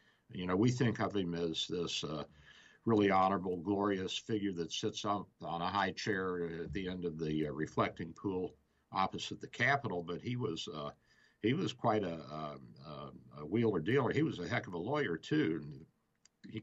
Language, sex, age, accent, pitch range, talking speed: English, male, 60-79, American, 90-120 Hz, 190 wpm